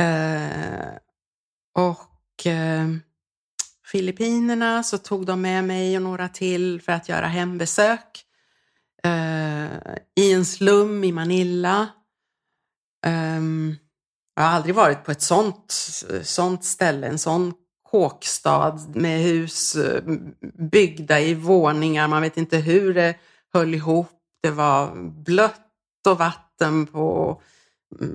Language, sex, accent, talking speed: Swedish, female, native, 115 wpm